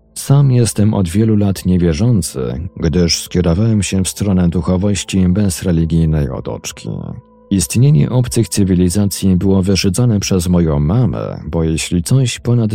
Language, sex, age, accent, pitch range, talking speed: Polish, male, 40-59, native, 90-110 Hz, 125 wpm